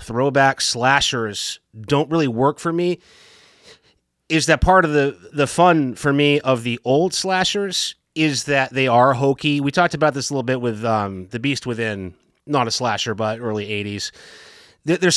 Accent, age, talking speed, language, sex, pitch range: American, 30-49, 175 wpm, English, male, 125-165 Hz